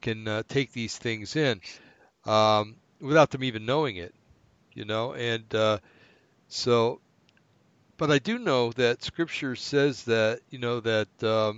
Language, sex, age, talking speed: English, male, 60-79, 145 wpm